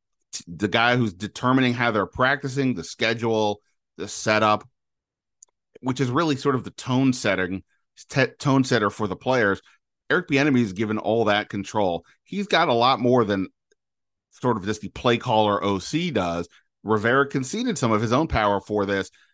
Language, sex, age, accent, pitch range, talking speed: English, male, 30-49, American, 105-140 Hz, 175 wpm